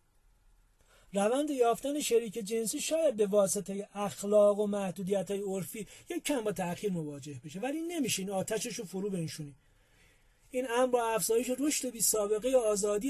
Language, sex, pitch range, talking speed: Persian, male, 175-235 Hz, 140 wpm